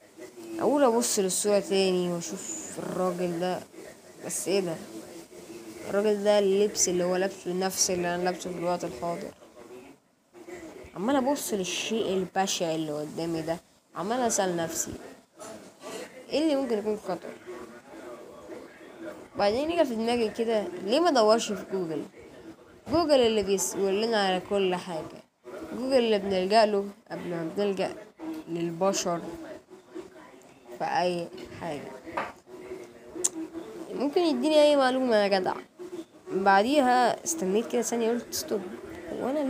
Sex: female